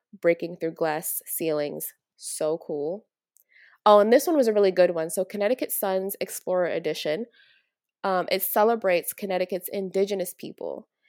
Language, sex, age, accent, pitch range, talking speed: English, female, 20-39, American, 175-210 Hz, 140 wpm